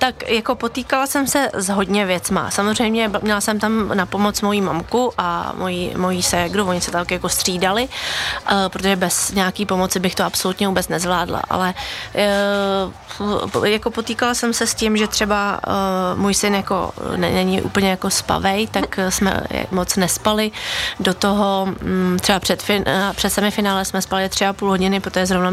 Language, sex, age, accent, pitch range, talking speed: Czech, female, 20-39, native, 185-210 Hz, 160 wpm